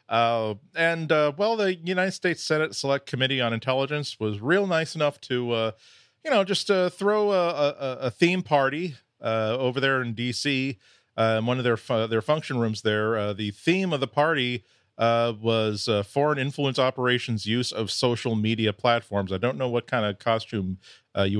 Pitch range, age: 110-145 Hz, 40-59